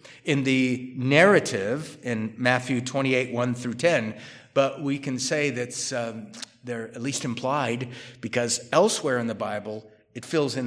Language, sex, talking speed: English, male, 145 wpm